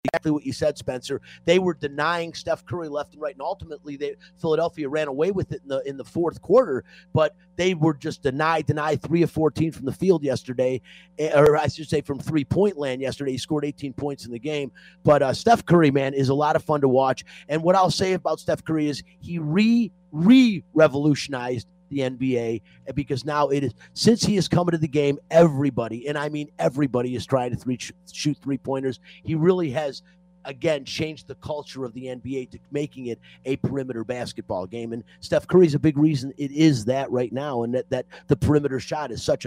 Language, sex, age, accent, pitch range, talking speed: English, male, 30-49, American, 135-180 Hz, 210 wpm